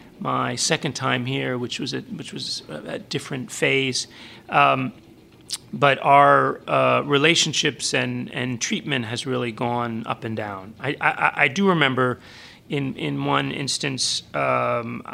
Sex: male